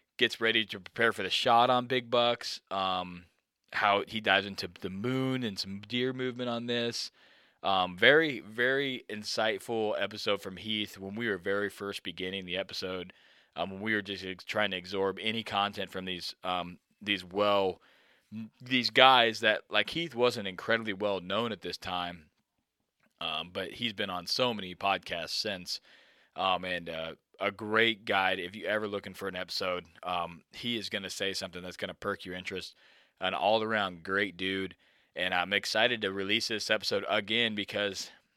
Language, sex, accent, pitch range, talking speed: English, male, American, 95-115 Hz, 180 wpm